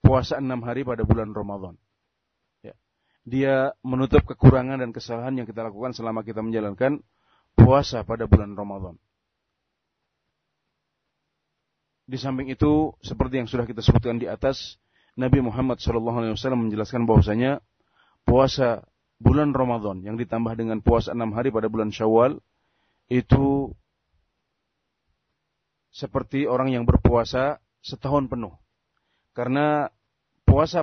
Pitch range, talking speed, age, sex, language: 110-135 Hz, 110 wpm, 30-49, male, Indonesian